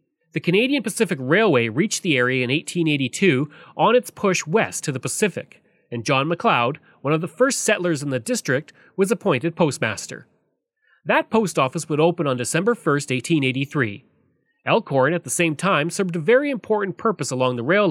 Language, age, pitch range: English, 30-49, 135-205 Hz